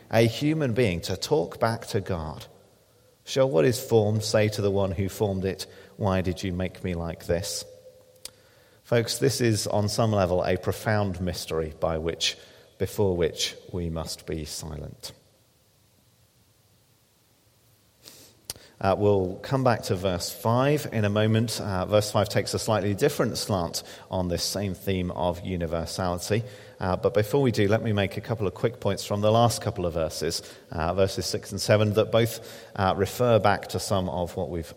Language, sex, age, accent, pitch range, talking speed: English, male, 40-59, British, 95-120 Hz, 175 wpm